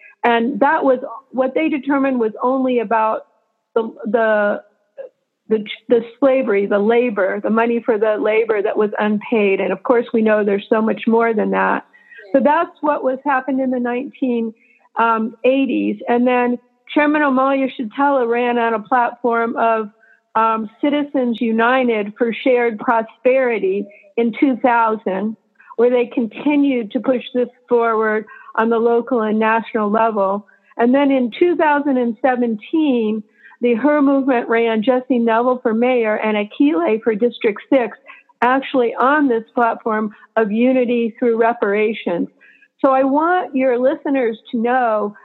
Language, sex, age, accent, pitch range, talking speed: English, female, 50-69, American, 225-265 Hz, 140 wpm